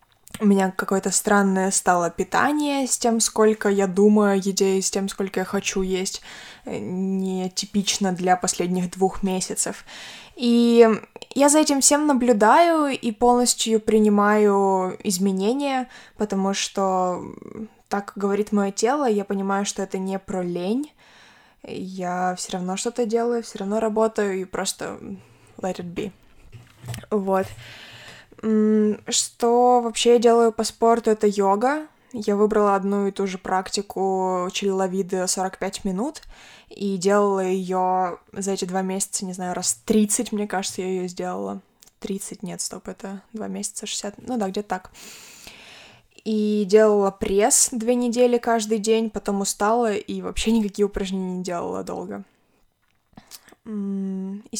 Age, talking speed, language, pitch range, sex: 20-39, 135 wpm, Ukrainian, 190-225 Hz, female